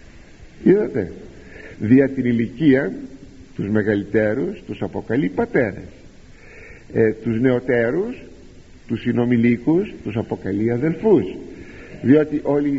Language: Greek